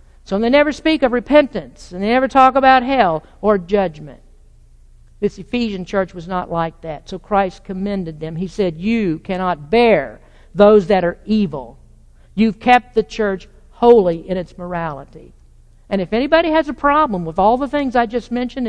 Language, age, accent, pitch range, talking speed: English, 50-69, American, 180-245 Hz, 175 wpm